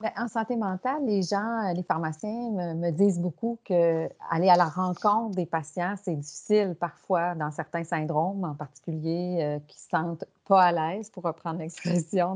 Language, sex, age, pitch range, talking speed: French, female, 40-59, 170-210 Hz, 175 wpm